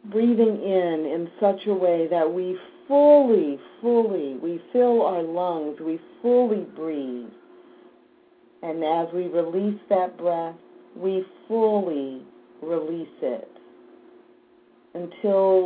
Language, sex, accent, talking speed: English, female, American, 105 wpm